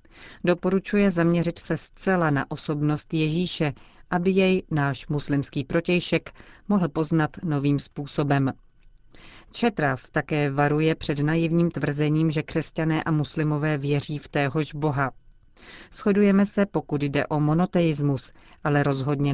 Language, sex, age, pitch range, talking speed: Czech, female, 40-59, 145-170 Hz, 120 wpm